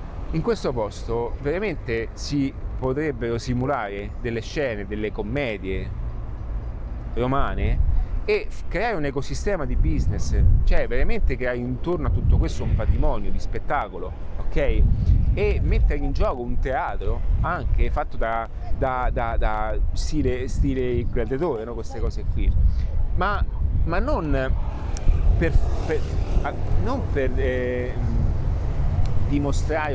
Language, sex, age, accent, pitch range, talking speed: Italian, male, 40-59, native, 100-140 Hz, 120 wpm